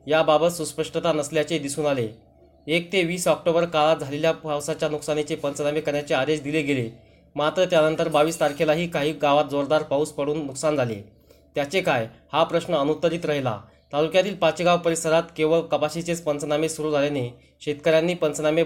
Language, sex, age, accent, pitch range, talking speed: Marathi, male, 20-39, native, 145-165 Hz, 150 wpm